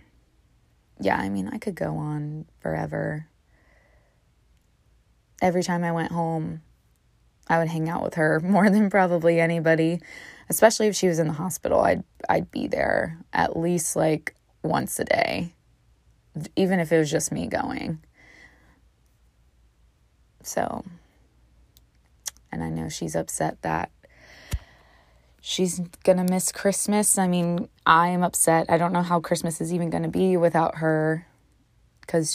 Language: English